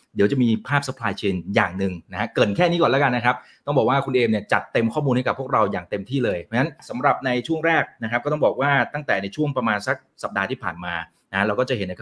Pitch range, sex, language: 105-160 Hz, male, Thai